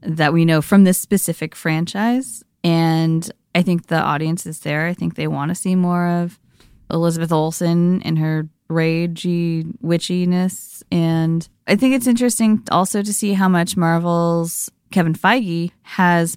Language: English